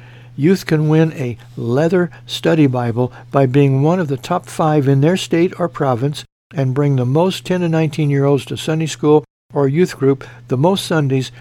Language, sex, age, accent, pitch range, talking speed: English, male, 60-79, American, 120-155 Hz, 185 wpm